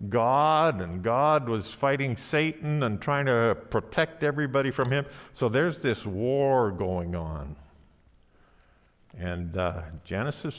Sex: male